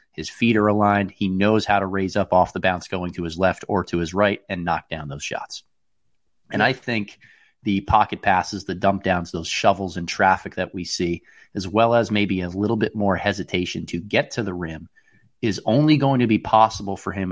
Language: English